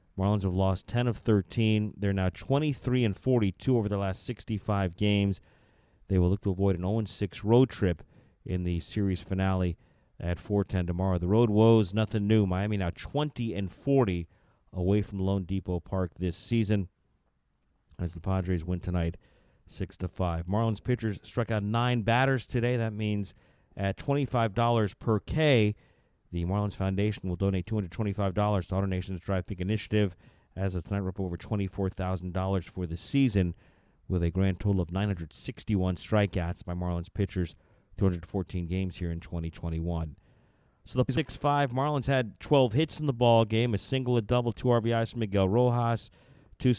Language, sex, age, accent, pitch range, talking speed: English, male, 40-59, American, 95-115 Hz, 160 wpm